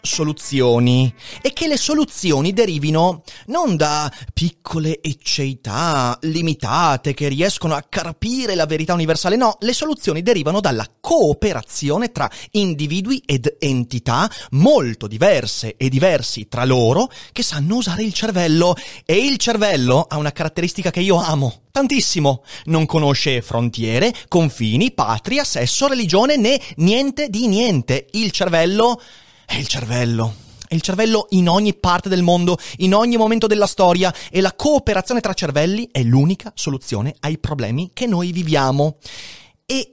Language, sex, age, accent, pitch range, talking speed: Italian, male, 30-49, native, 135-190 Hz, 140 wpm